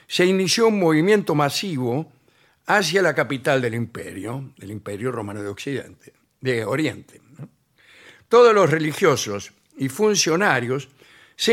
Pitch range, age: 135-195 Hz, 60-79